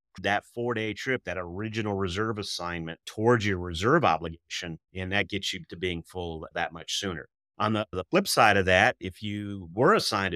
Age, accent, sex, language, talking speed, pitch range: 30-49, American, male, English, 185 wpm, 95-115 Hz